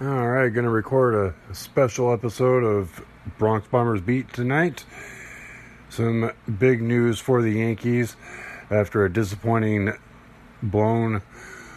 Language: English